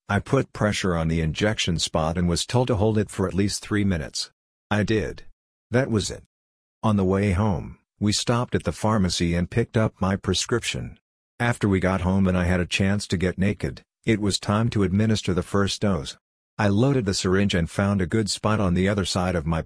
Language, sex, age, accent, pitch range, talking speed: English, male, 50-69, American, 90-105 Hz, 220 wpm